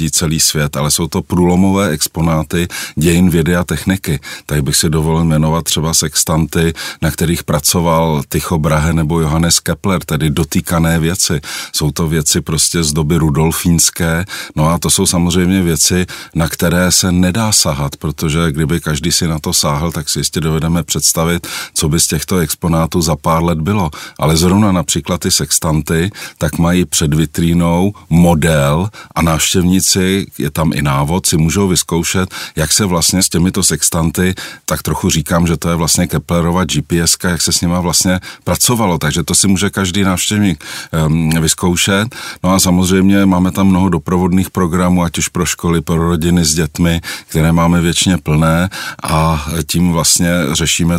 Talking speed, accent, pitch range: 165 wpm, native, 80-90 Hz